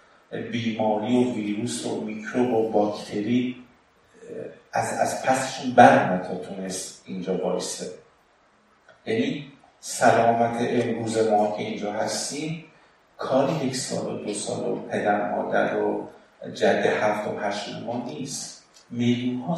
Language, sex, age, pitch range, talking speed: Persian, male, 50-69, 105-125 Hz, 120 wpm